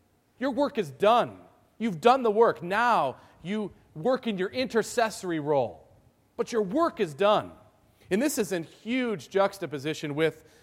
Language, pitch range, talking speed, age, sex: English, 155-230 Hz, 150 wpm, 40-59, male